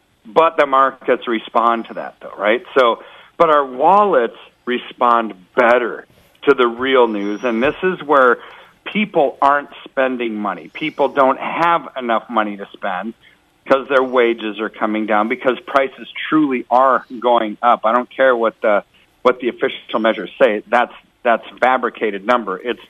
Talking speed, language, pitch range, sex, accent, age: 155 wpm, English, 115-145 Hz, male, American, 50-69